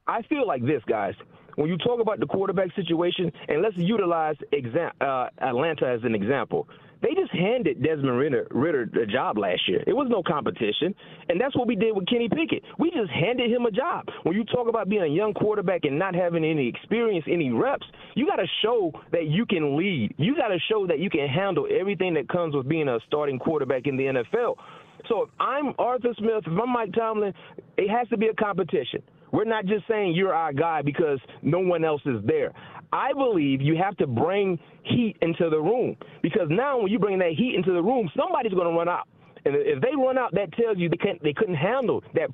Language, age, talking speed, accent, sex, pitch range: English, 30-49, 220 wpm, American, male, 180-245 Hz